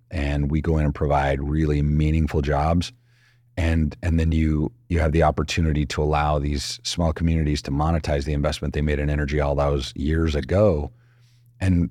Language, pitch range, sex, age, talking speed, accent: English, 75-85 Hz, male, 40-59, 175 wpm, American